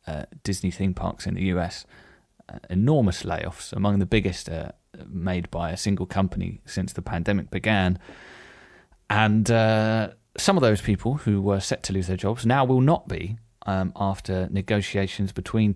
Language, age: English, 30-49